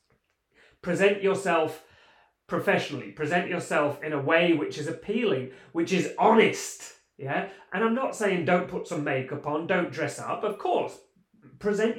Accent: British